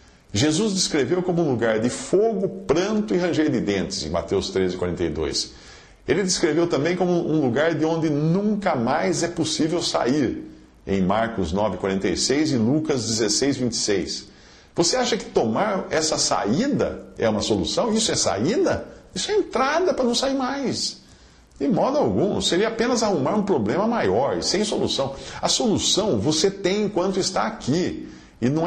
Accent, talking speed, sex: Brazilian, 160 wpm, male